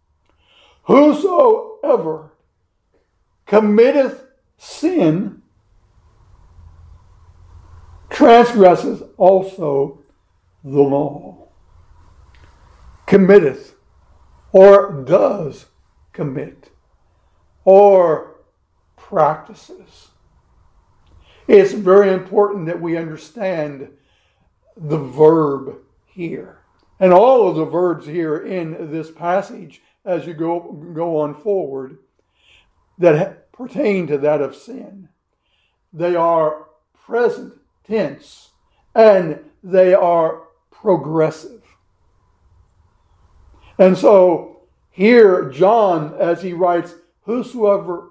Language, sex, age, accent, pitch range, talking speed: English, male, 60-79, American, 140-205 Hz, 75 wpm